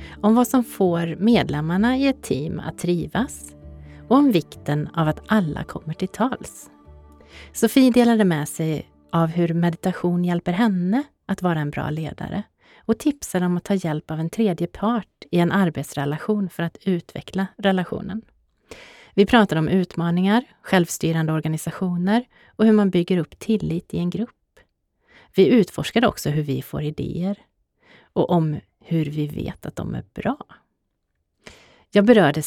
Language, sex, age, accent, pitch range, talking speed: Swedish, female, 30-49, native, 160-205 Hz, 150 wpm